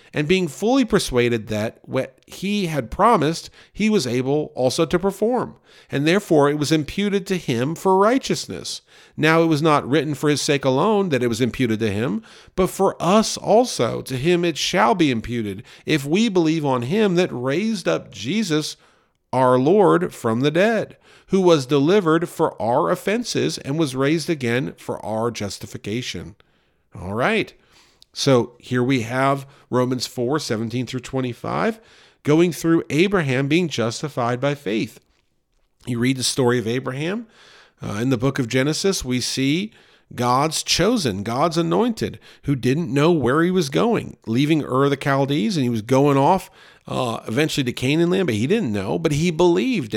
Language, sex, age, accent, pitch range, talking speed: English, male, 50-69, American, 125-175 Hz, 170 wpm